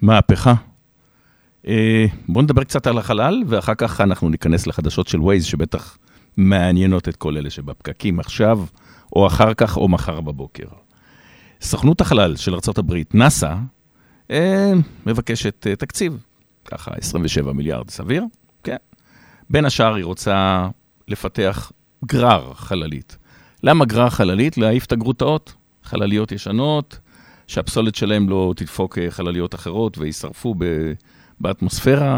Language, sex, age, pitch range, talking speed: Hebrew, male, 50-69, 85-115 Hz, 115 wpm